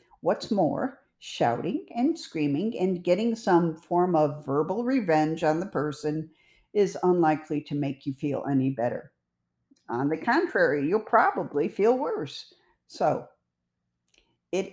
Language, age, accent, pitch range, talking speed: English, 50-69, American, 135-210 Hz, 130 wpm